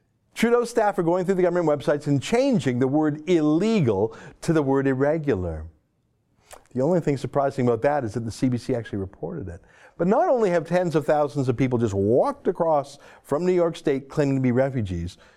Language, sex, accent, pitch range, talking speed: English, male, American, 125-195 Hz, 195 wpm